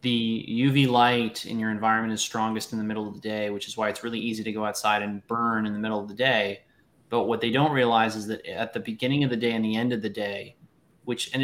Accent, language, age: American, English, 20-39